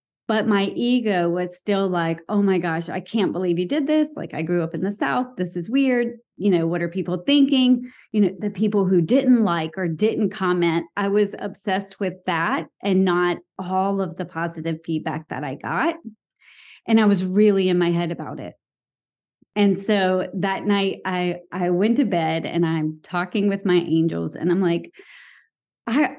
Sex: female